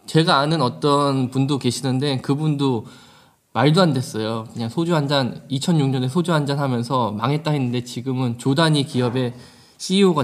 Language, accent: Korean, native